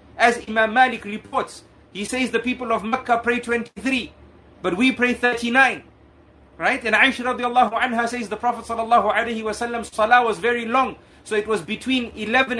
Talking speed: 155 wpm